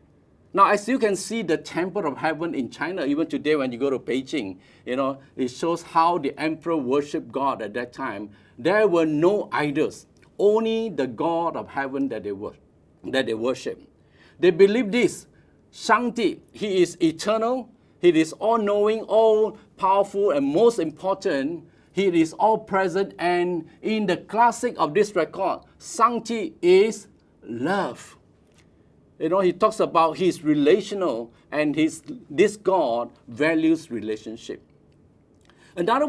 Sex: male